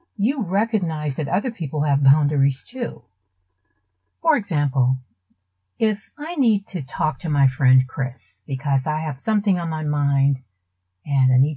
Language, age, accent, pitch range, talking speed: English, 50-69, American, 125-190 Hz, 150 wpm